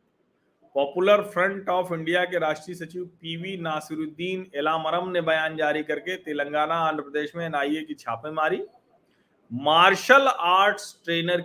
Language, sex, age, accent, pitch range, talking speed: Hindi, male, 40-59, native, 135-180 Hz, 130 wpm